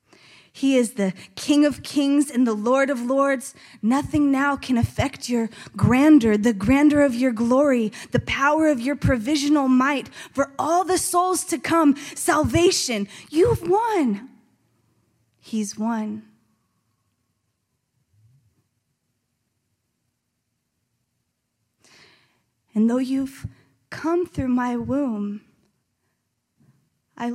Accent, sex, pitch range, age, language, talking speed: American, female, 195-270 Hz, 20-39, English, 105 wpm